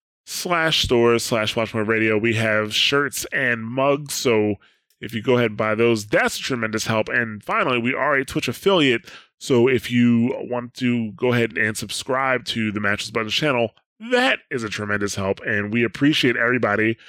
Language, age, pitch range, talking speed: English, 20-39, 100-125 Hz, 185 wpm